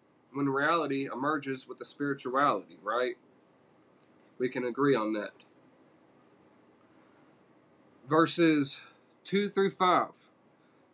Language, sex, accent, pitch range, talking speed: English, male, American, 125-150 Hz, 90 wpm